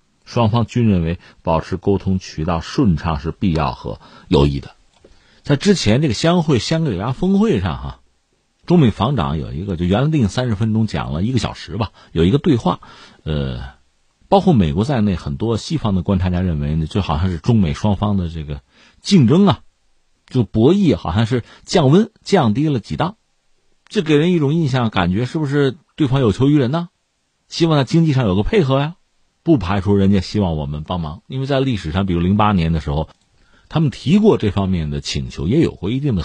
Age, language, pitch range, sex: 50-69, Chinese, 90-145 Hz, male